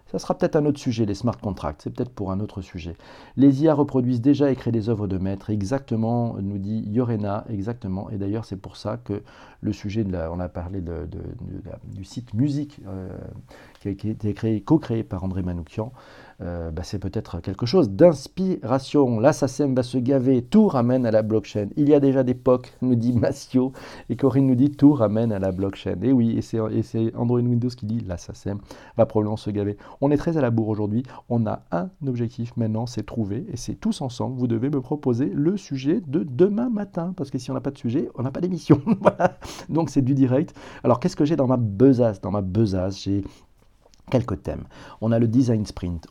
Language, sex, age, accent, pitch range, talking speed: French, male, 40-59, French, 105-135 Hz, 220 wpm